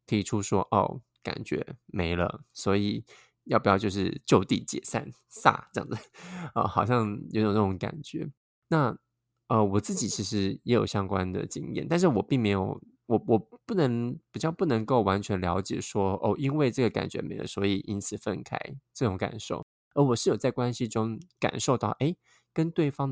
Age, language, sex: 20-39, Chinese, male